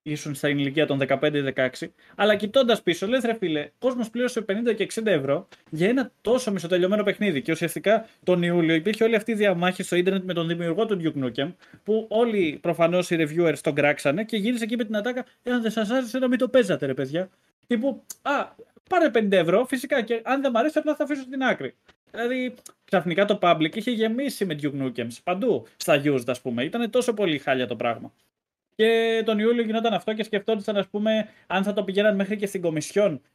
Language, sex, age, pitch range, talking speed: Greek, male, 20-39, 150-220 Hz, 200 wpm